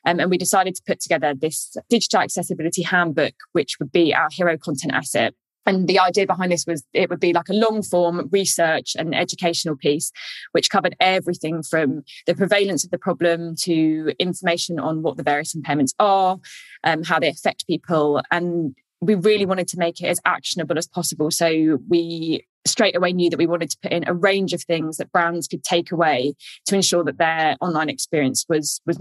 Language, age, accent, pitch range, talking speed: English, 20-39, British, 160-185 Hz, 200 wpm